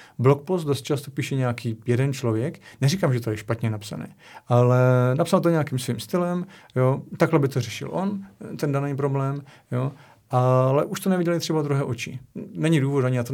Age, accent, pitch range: 40-59, native, 125-155 Hz